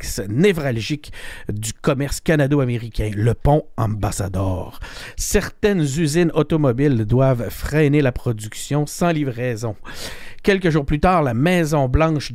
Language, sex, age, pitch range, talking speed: French, male, 50-69, 125-165 Hz, 105 wpm